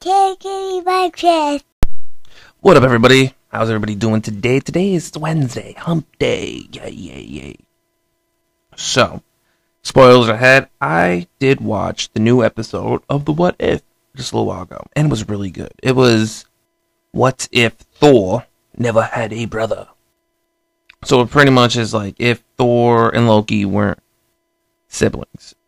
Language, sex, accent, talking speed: English, male, American, 140 wpm